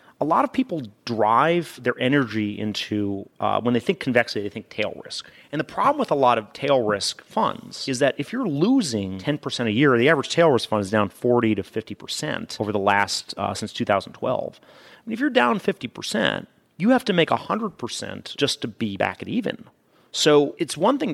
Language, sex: English, male